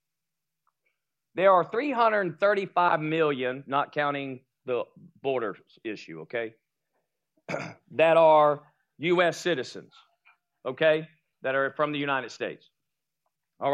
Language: English